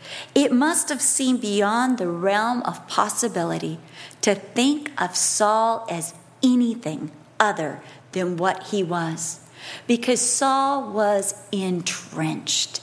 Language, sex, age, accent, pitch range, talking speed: English, female, 40-59, American, 165-240 Hz, 110 wpm